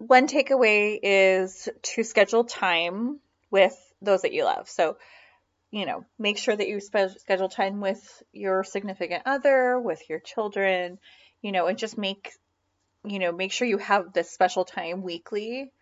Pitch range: 175-220 Hz